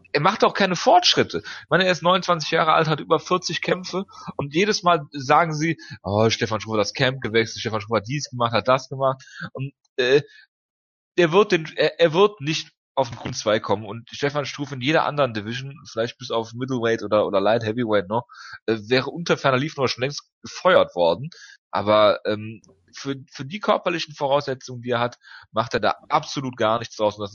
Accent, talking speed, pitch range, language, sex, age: German, 205 wpm, 105-140 Hz, German, male, 30-49